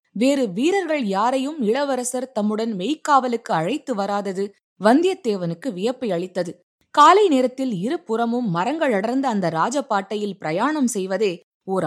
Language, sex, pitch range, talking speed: Tamil, female, 185-250 Hz, 105 wpm